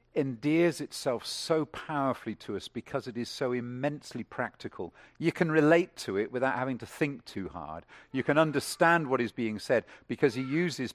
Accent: British